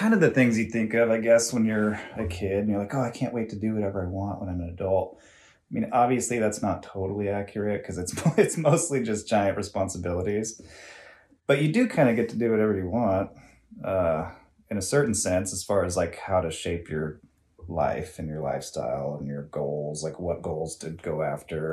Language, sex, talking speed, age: English, male, 220 wpm, 30-49